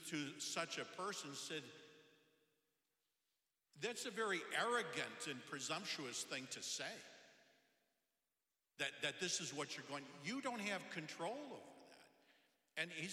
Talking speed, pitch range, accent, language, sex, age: 130 wpm, 150-195 Hz, American, English, male, 60-79